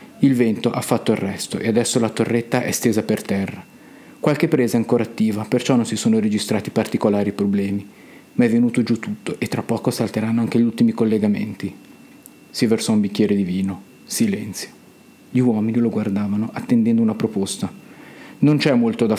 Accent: native